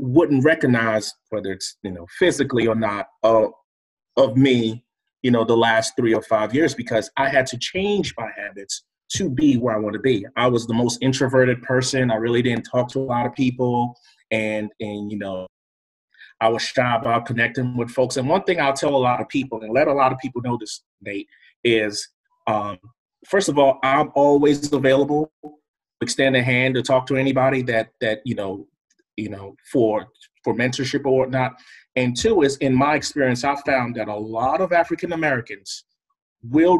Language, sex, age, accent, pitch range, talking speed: English, male, 30-49, American, 110-140 Hz, 195 wpm